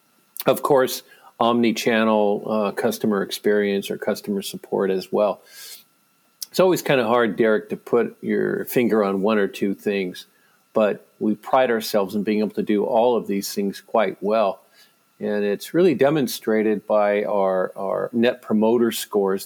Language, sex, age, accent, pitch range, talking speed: English, male, 50-69, American, 100-115 Hz, 155 wpm